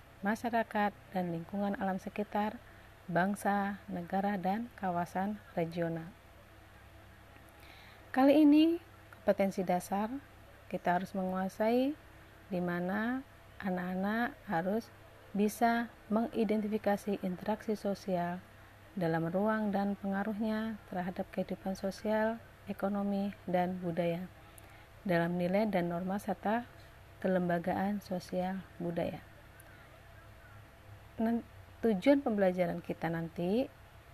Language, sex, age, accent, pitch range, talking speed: Indonesian, female, 40-59, native, 165-210 Hz, 80 wpm